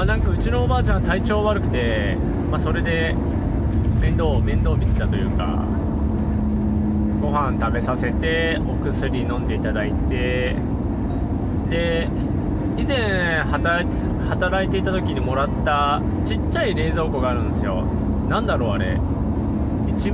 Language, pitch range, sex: Japanese, 90-105 Hz, male